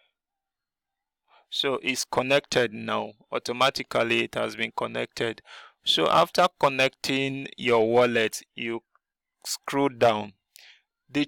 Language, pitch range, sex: English, 120-145 Hz, male